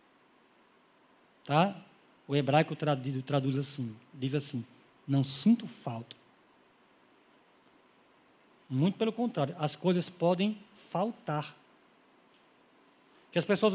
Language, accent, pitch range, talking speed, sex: Portuguese, Brazilian, 155-215 Hz, 85 wpm, male